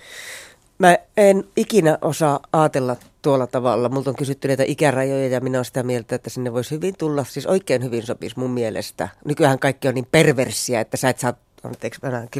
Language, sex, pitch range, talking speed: Finnish, female, 125-165 Hz, 185 wpm